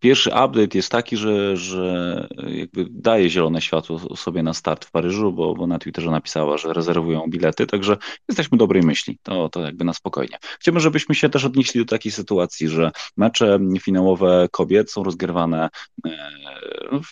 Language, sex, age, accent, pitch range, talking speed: Polish, male, 30-49, native, 85-135 Hz, 165 wpm